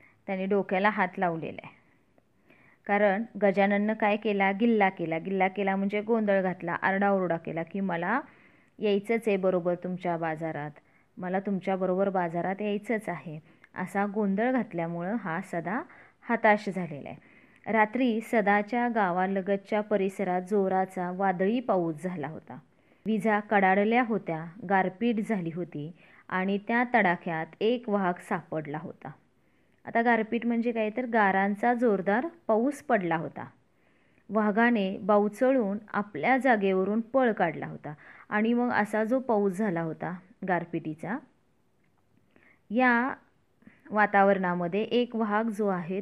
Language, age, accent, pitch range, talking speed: Marathi, 20-39, native, 185-230 Hz, 115 wpm